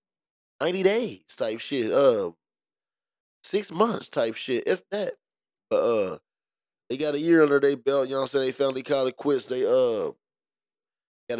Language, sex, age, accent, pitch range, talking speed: English, male, 10-29, American, 115-145 Hz, 175 wpm